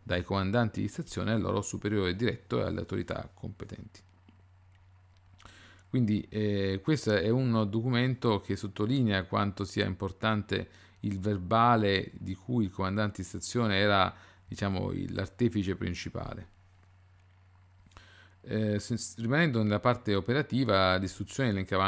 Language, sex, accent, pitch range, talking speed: Italian, male, native, 95-115 Hz, 115 wpm